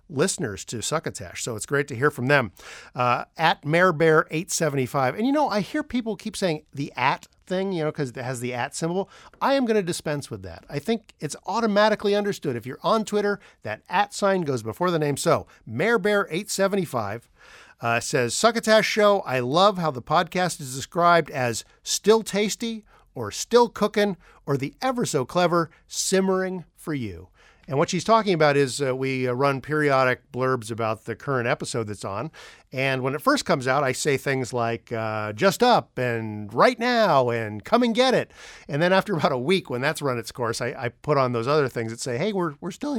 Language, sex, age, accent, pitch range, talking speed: English, male, 50-69, American, 125-195 Hz, 205 wpm